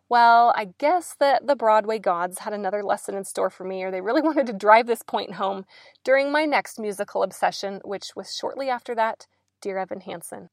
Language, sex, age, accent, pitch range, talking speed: English, female, 20-39, American, 195-240 Hz, 205 wpm